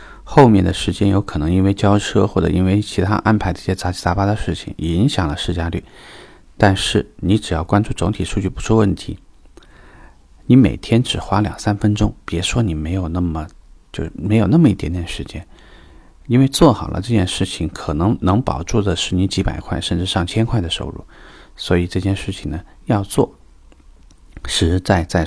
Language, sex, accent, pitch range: Chinese, male, native, 80-100 Hz